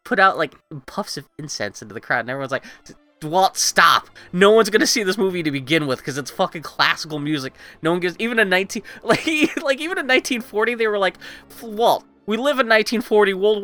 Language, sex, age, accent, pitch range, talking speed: English, male, 20-39, American, 125-195 Hz, 205 wpm